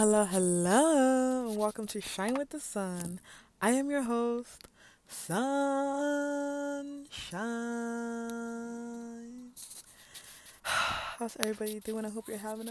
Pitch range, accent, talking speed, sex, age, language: 195-245 Hz, American, 95 wpm, female, 20-39, English